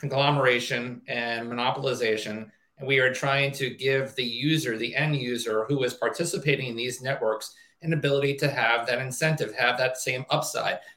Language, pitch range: English, 135-160 Hz